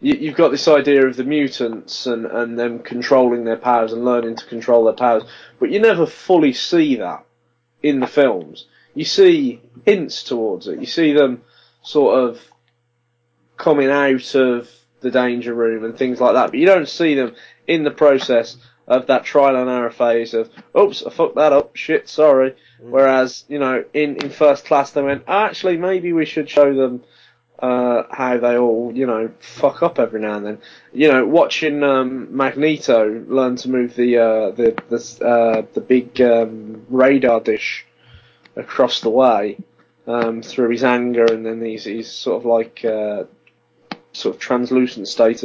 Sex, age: male, 20-39